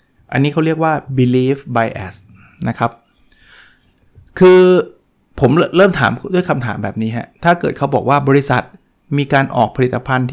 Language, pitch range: Thai, 120-155 Hz